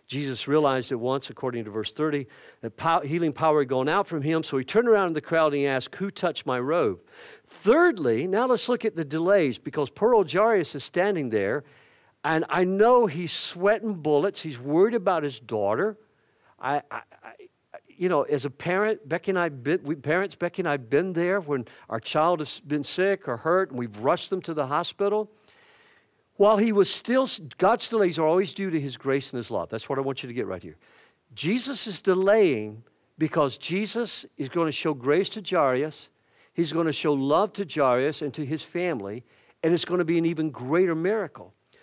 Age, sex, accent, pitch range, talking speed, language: 50-69, male, American, 140-200 Hz, 210 wpm, English